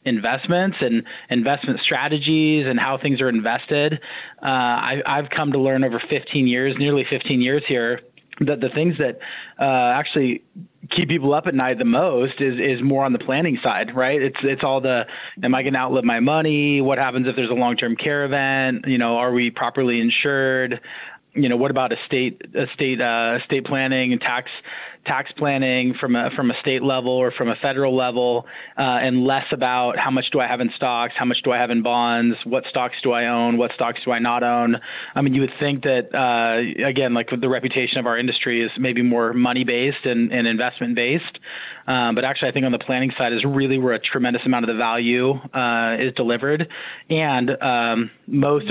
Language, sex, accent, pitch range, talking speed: English, male, American, 120-140 Hz, 210 wpm